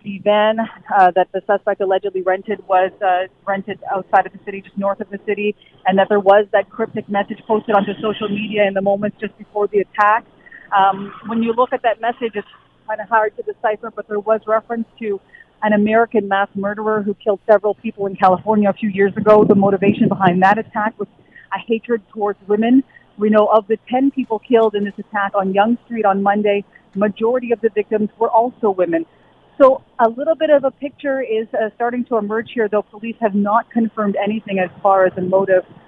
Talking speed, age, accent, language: 210 wpm, 40-59, American, English